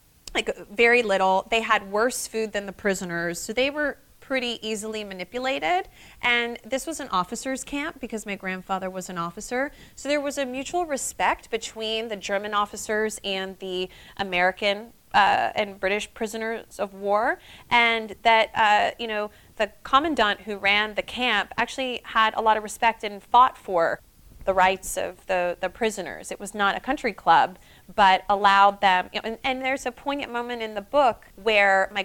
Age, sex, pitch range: 30-49, female, 195-235 Hz